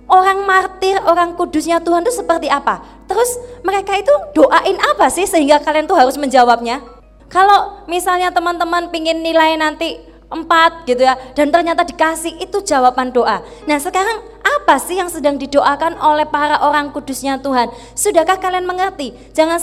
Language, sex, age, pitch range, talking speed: Indonesian, female, 20-39, 255-345 Hz, 155 wpm